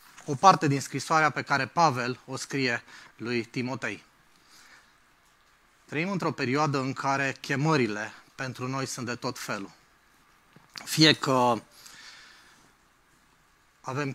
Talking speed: 110 wpm